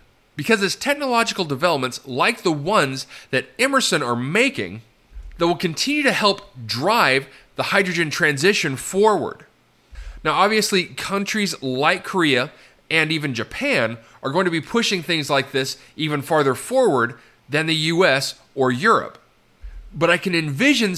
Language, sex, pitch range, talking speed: English, male, 130-200 Hz, 140 wpm